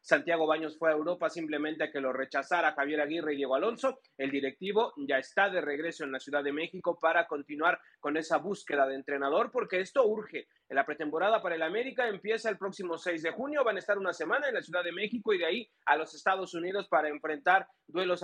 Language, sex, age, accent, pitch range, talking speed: Spanish, male, 30-49, Mexican, 150-200 Hz, 220 wpm